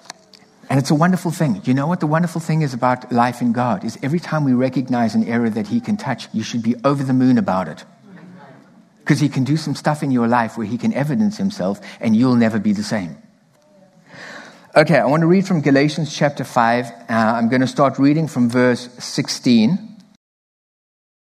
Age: 50-69